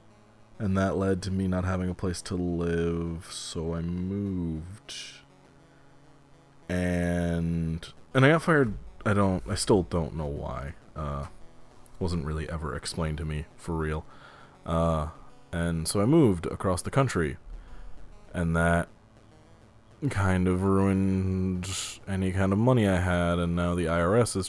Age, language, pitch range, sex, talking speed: 20-39, English, 85-120 Hz, male, 145 wpm